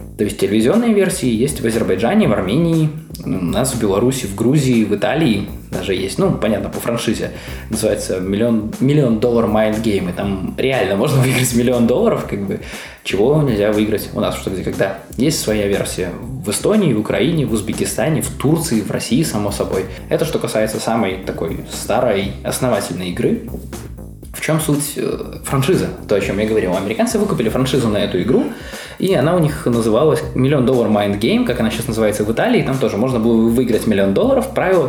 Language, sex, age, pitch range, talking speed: Russian, male, 20-39, 105-130 Hz, 180 wpm